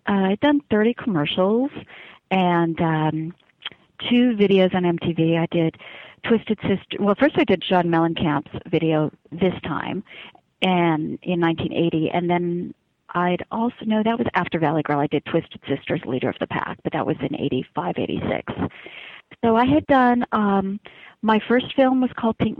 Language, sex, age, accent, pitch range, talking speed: English, female, 40-59, American, 170-210 Hz, 165 wpm